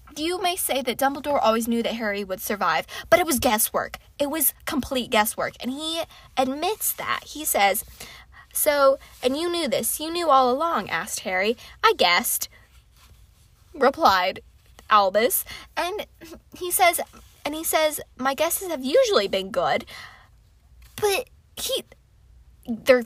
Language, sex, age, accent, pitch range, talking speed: English, female, 10-29, American, 230-330 Hz, 145 wpm